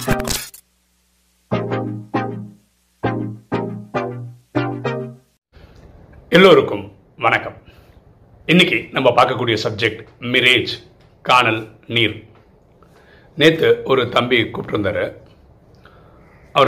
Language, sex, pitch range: Tamil, male, 105-130 Hz